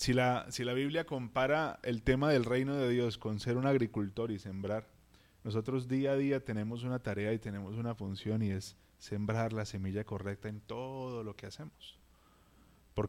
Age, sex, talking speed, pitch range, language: 20-39, male, 190 wpm, 100-130 Hz, Spanish